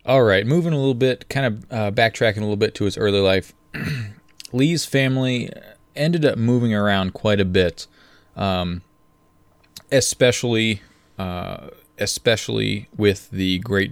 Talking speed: 140 wpm